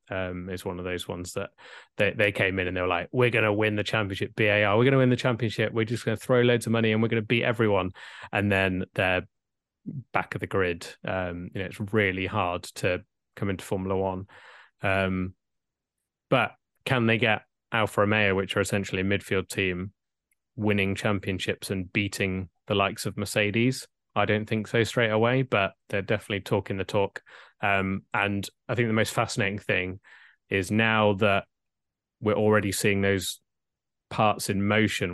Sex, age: male, 20-39